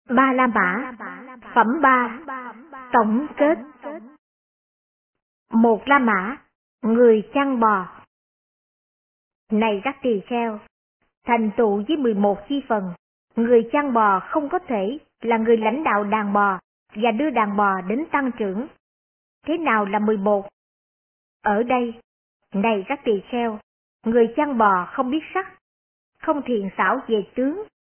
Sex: male